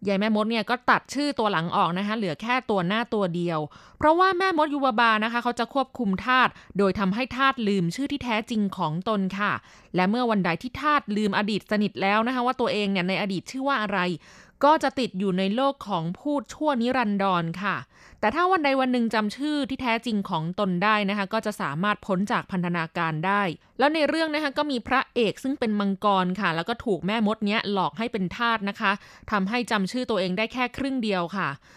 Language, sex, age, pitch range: Thai, female, 20-39, 190-245 Hz